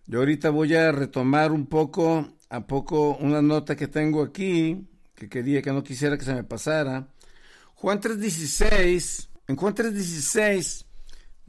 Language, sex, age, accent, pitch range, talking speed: Spanish, male, 60-79, Mexican, 135-170 Hz, 145 wpm